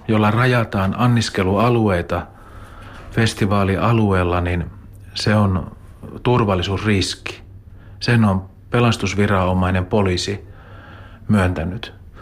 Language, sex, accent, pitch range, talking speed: Finnish, male, native, 95-105 Hz, 70 wpm